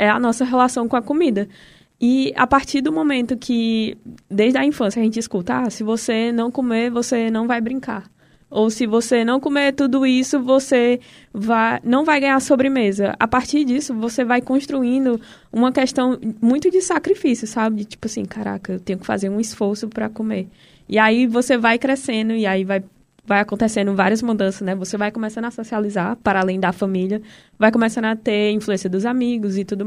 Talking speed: 190 wpm